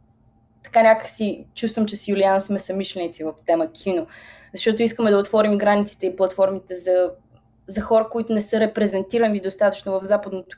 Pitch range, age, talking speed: 175-220 Hz, 20-39, 160 wpm